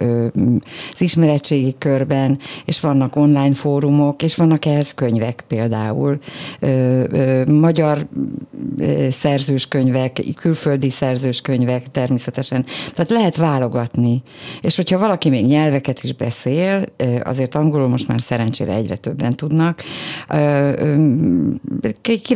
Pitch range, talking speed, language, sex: 120-145 Hz, 100 wpm, Hungarian, female